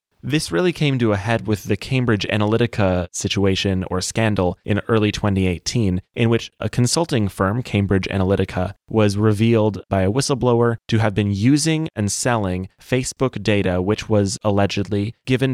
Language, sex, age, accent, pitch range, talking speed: English, male, 20-39, American, 100-120 Hz, 155 wpm